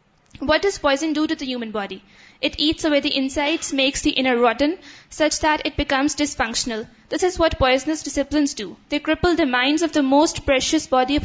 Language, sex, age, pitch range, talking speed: Urdu, female, 20-39, 260-300 Hz, 205 wpm